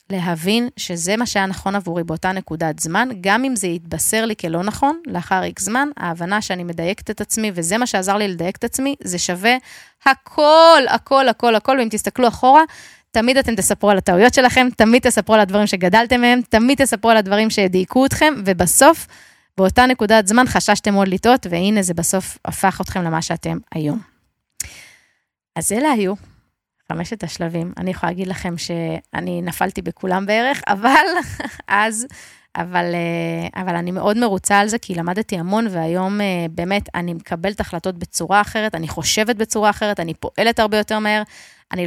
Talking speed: 155 wpm